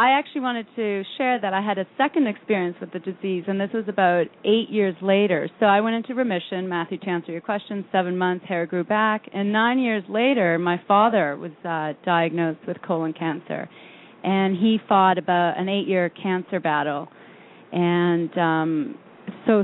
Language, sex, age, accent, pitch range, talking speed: English, female, 30-49, American, 175-210 Hz, 180 wpm